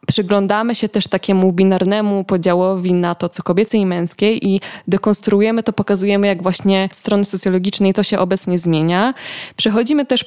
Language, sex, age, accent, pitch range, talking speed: Polish, female, 20-39, native, 185-215 Hz, 150 wpm